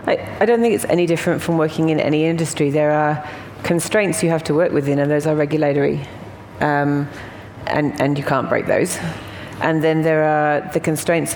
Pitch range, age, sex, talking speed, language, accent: 145-165 Hz, 40-59, female, 195 wpm, English, British